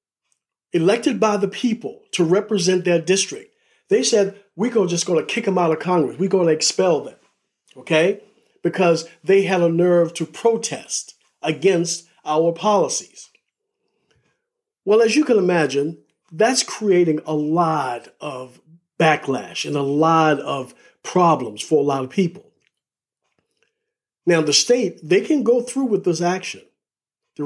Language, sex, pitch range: English, male, 165-230 Hz